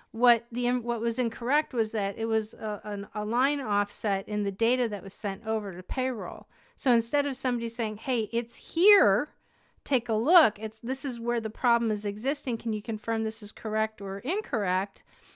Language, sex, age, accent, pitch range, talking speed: English, female, 40-59, American, 210-260 Hz, 195 wpm